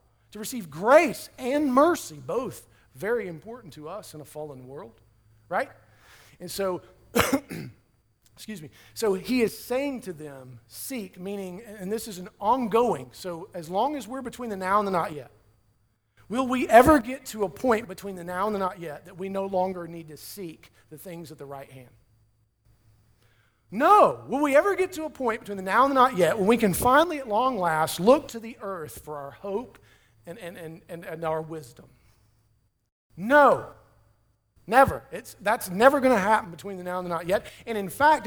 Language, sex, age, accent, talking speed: English, male, 40-59, American, 195 wpm